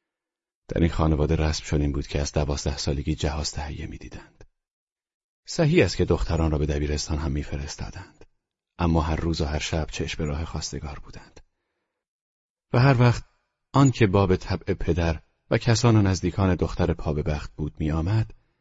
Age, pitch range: 40-59, 75-90 Hz